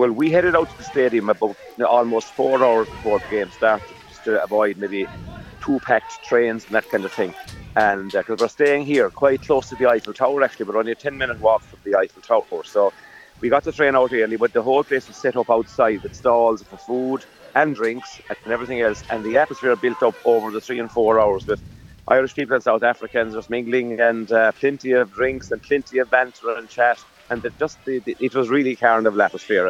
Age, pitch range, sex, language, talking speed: 40-59, 115-145 Hz, male, English, 225 wpm